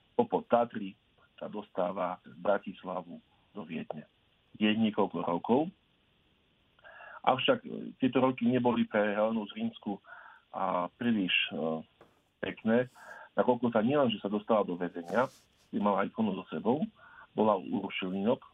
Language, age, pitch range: Slovak, 50-69, 100-120 Hz